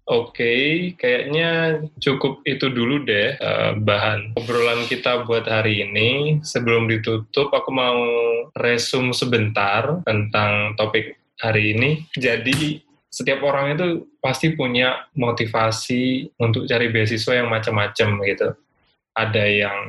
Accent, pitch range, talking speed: native, 110-130 Hz, 120 wpm